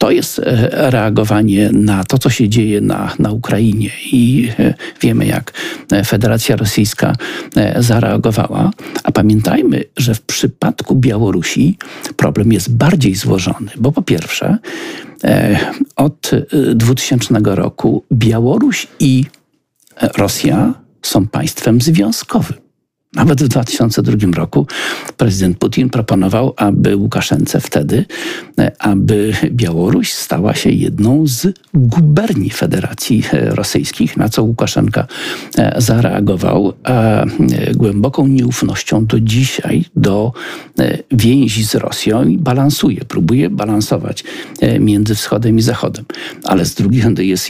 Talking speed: 105 wpm